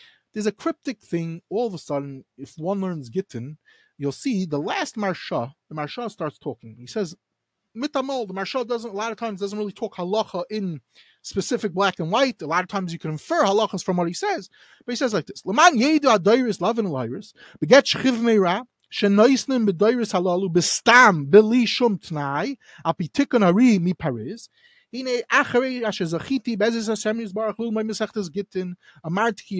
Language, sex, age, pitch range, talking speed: English, male, 30-49, 175-235 Hz, 115 wpm